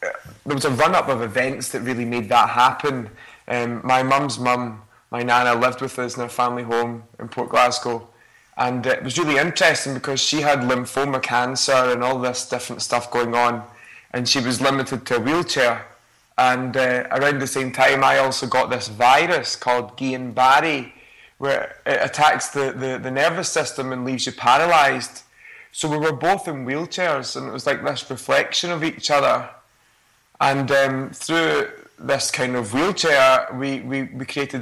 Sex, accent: male, British